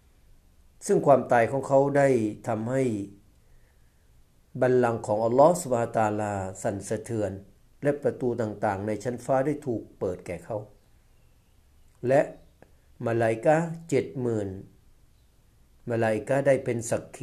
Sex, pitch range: male, 105-135 Hz